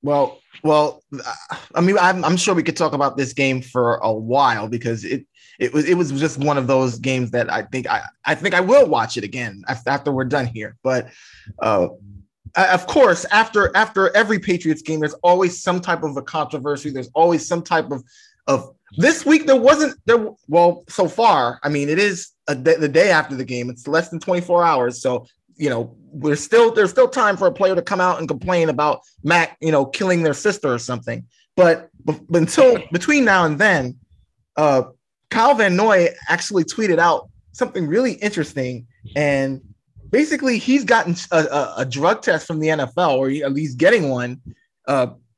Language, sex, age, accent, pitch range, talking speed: English, male, 20-39, American, 130-180 Hz, 195 wpm